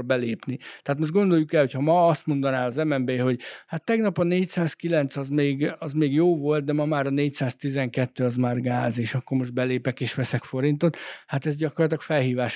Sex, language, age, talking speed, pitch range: male, Hungarian, 60-79, 200 wpm, 130-155 Hz